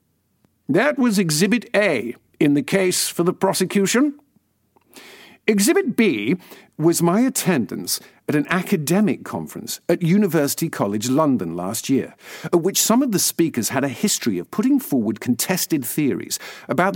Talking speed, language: 140 wpm, English